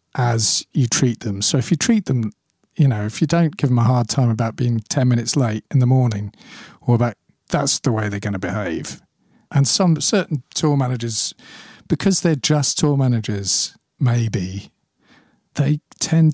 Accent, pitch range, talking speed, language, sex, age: British, 110-145 Hz, 180 wpm, English, male, 40-59